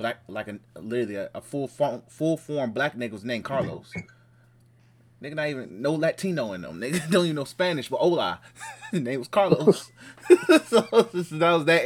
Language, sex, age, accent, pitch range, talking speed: English, male, 20-39, American, 100-120 Hz, 185 wpm